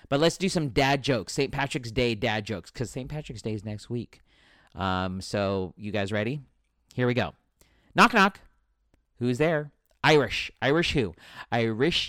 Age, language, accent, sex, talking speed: 40-59, English, American, male, 170 wpm